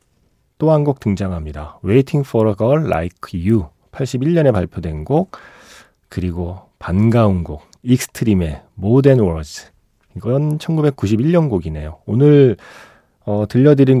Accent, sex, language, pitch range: native, male, Korean, 90-135 Hz